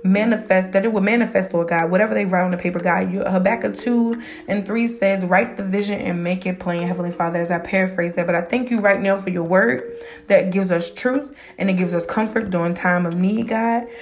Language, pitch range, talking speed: English, 175-230 Hz, 240 wpm